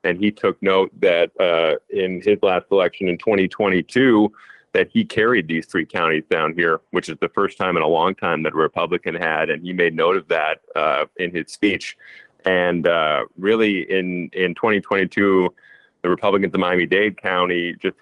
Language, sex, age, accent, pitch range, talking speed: English, male, 40-59, American, 85-100 Hz, 185 wpm